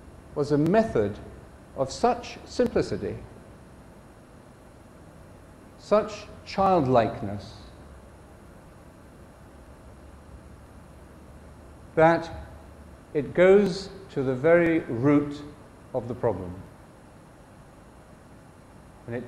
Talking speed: 60 wpm